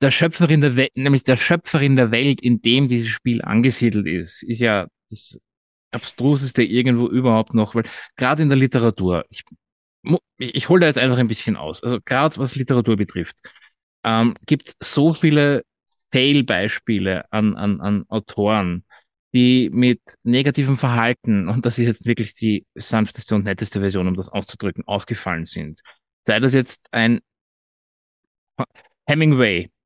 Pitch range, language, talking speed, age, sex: 110-140 Hz, German, 155 wpm, 20-39, male